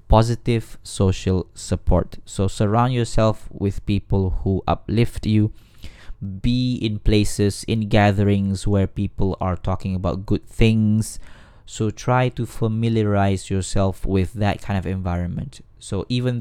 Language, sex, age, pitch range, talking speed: Malay, male, 20-39, 100-125 Hz, 130 wpm